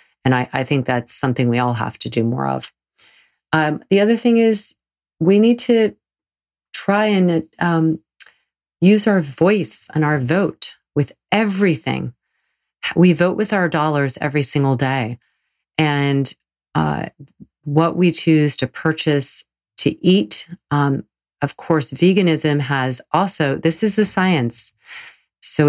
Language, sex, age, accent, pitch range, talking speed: English, female, 40-59, American, 125-160 Hz, 140 wpm